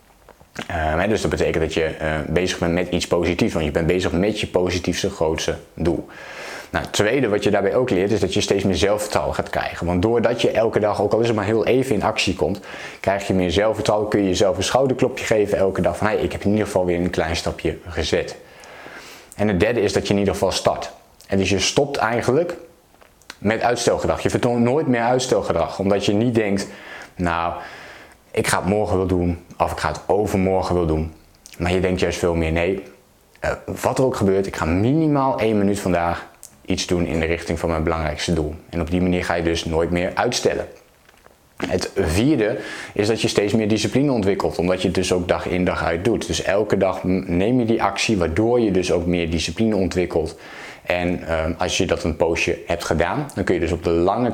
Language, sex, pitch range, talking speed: Dutch, male, 85-100 Hz, 220 wpm